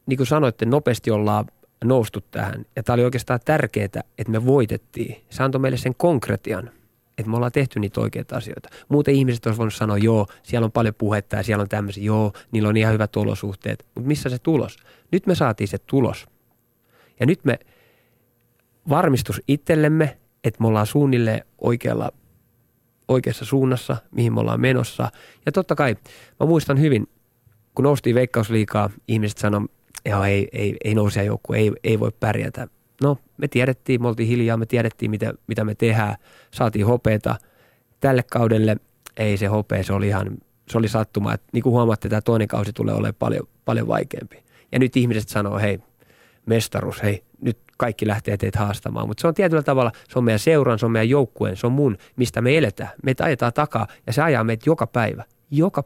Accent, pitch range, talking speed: native, 110-130 Hz, 185 wpm